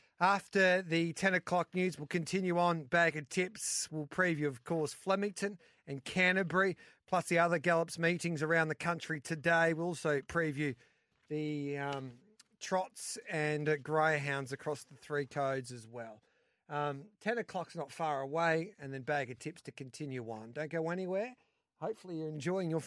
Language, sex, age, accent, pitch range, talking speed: English, male, 40-59, Australian, 150-185 Hz, 165 wpm